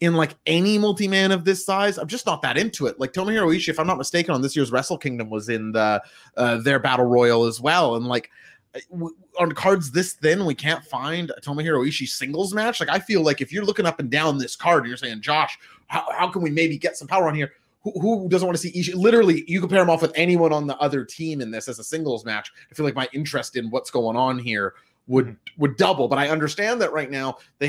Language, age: English, 30-49